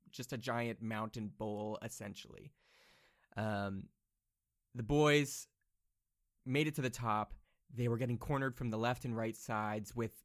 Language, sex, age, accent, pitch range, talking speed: English, male, 20-39, American, 110-125 Hz, 145 wpm